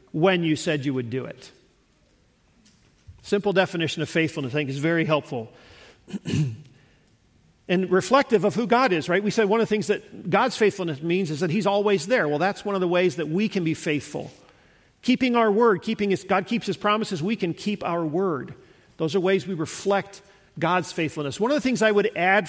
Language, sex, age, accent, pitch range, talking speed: English, male, 50-69, American, 150-195 Hz, 205 wpm